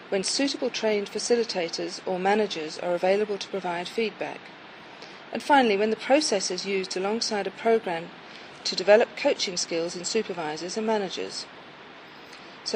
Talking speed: 140 wpm